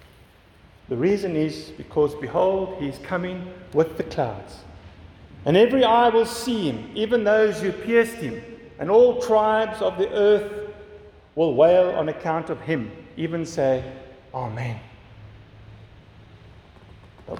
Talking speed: 130 wpm